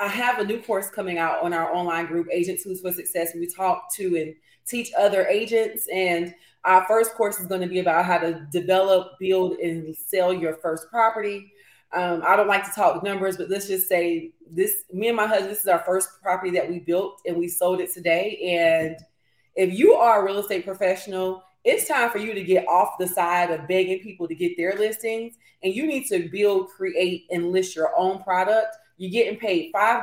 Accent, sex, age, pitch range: American, female, 30-49, 175-200 Hz